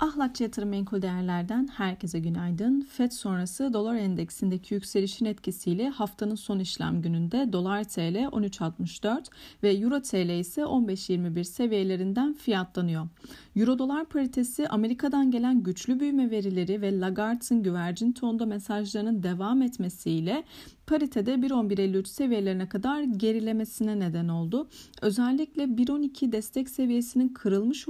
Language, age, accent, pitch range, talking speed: Turkish, 40-59, native, 190-260 Hz, 115 wpm